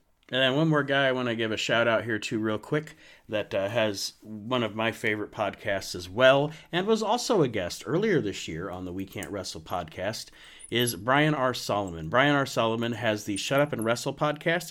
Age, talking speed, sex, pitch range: 40-59, 215 wpm, male, 105-135 Hz